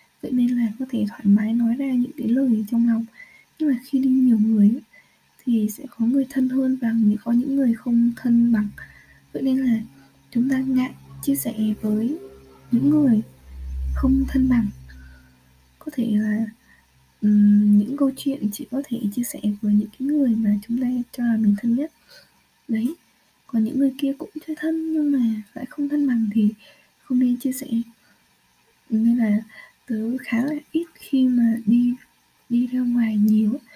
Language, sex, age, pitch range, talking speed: Vietnamese, female, 20-39, 220-265 Hz, 185 wpm